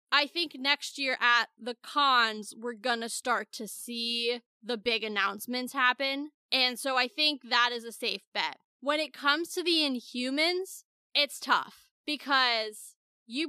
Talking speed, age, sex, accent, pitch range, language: 160 wpm, 10-29, female, American, 235-295 Hz, English